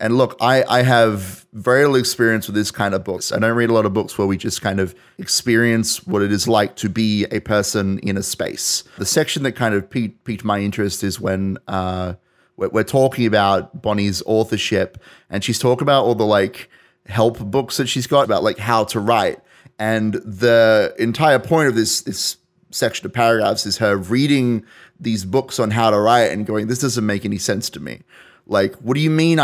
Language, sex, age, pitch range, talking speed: English, male, 30-49, 105-120 Hz, 210 wpm